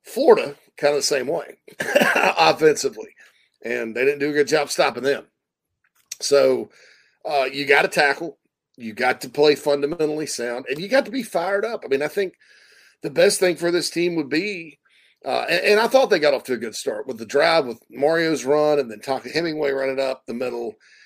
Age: 40-59